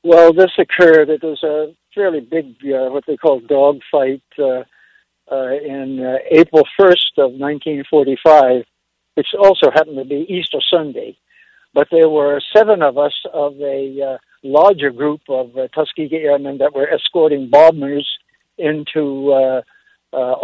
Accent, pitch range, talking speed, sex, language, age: American, 135-160 Hz, 145 wpm, male, English, 60-79